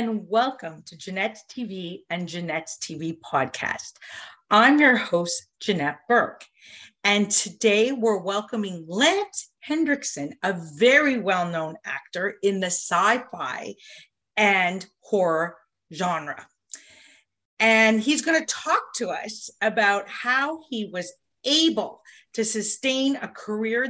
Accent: American